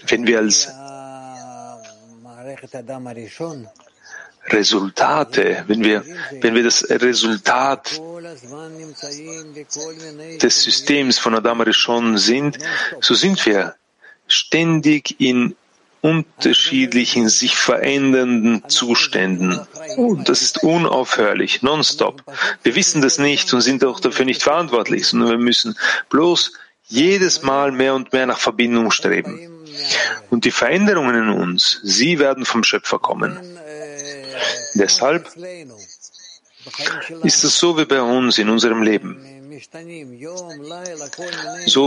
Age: 40-59